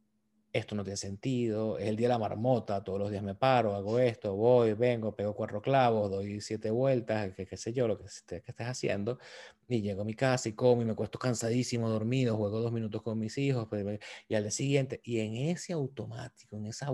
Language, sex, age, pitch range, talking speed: Spanish, male, 30-49, 100-125 Hz, 215 wpm